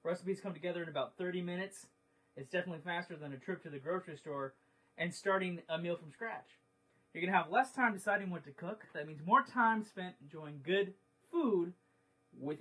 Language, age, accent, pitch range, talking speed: English, 20-39, American, 135-205 Hz, 200 wpm